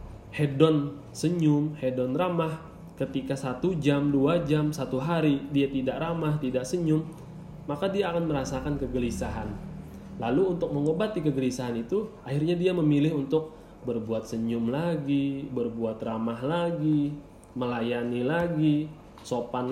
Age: 20-39